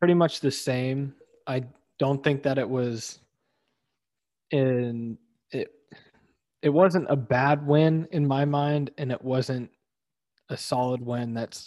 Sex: male